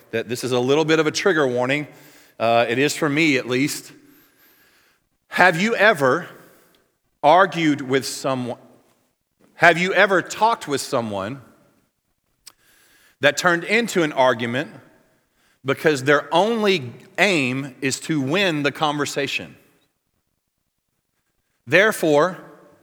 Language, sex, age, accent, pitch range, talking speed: English, male, 40-59, American, 140-195 Hz, 115 wpm